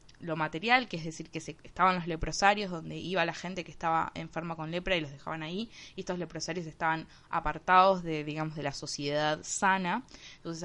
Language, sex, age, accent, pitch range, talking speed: Spanish, female, 20-39, Argentinian, 155-185 Hz, 195 wpm